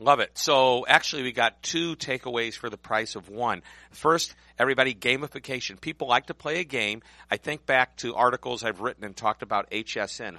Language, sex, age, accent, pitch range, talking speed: English, male, 50-69, American, 105-135 Hz, 190 wpm